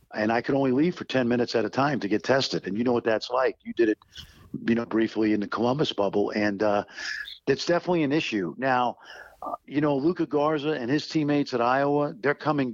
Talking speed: 230 wpm